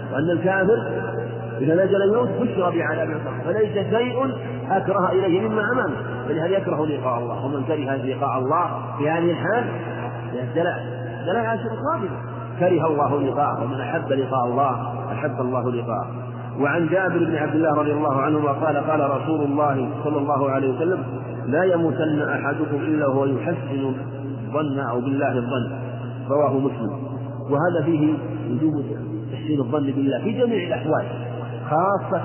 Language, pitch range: Arabic, 125-165 Hz